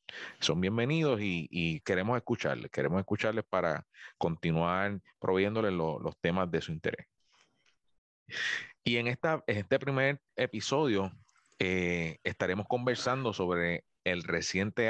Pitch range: 90-125 Hz